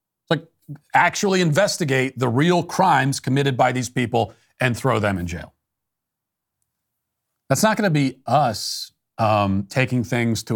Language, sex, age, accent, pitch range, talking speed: English, male, 40-59, American, 110-145 Hz, 135 wpm